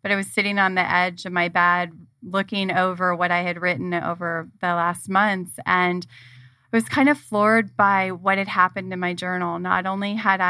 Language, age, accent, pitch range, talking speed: English, 30-49, American, 180-205 Hz, 205 wpm